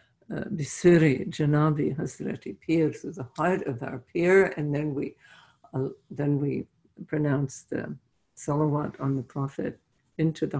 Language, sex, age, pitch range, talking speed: English, female, 60-79, 135-160 Hz, 140 wpm